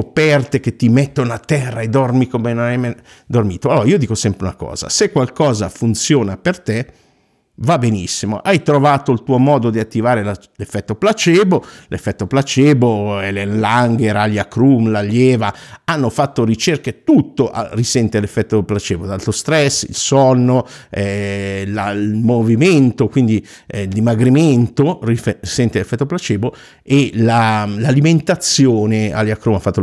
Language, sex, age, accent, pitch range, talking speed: Italian, male, 50-69, native, 105-140 Hz, 140 wpm